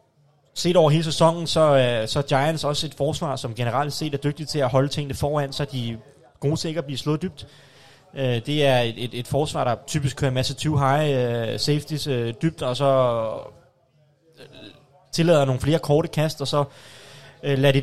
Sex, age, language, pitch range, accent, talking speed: male, 20-39, Danish, 130-155 Hz, native, 175 wpm